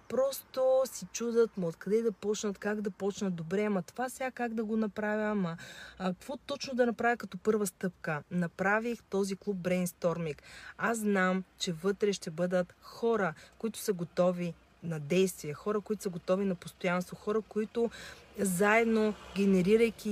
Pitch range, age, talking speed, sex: 185-215 Hz, 30-49, 155 wpm, female